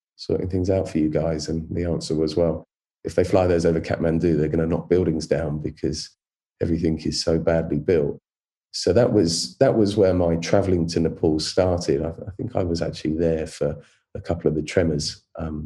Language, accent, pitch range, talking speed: English, British, 80-85 Hz, 205 wpm